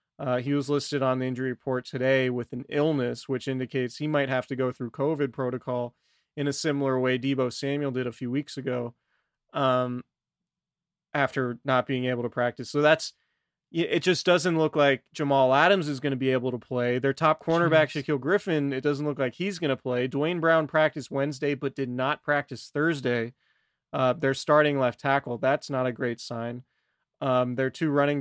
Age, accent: 20-39, American